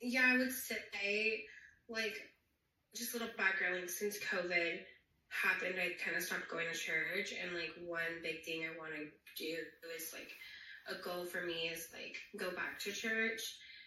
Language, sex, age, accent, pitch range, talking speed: English, female, 20-39, American, 170-205 Hz, 175 wpm